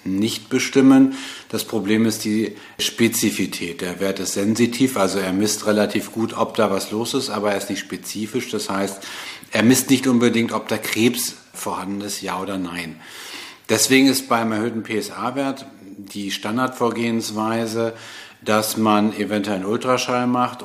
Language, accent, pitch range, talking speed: German, German, 100-120 Hz, 155 wpm